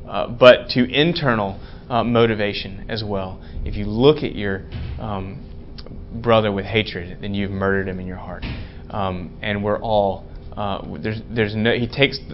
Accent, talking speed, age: American, 165 wpm, 30-49